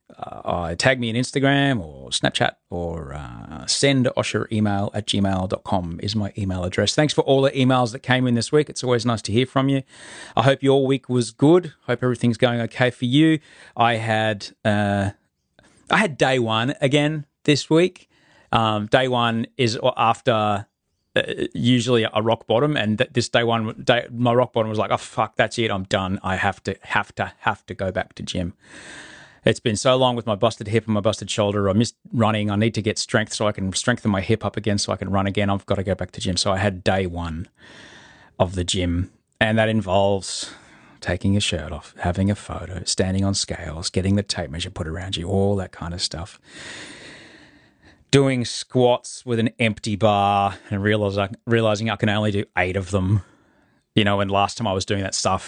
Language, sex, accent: English, male, Australian